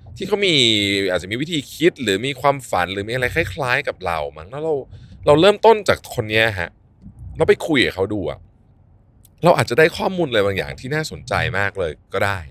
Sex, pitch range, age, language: male, 95-140 Hz, 20-39, Thai